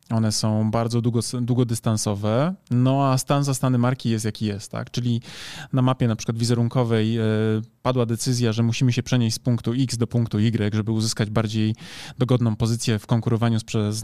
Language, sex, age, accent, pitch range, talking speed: Polish, male, 20-39, native, 115-145 Hz, 180 wpm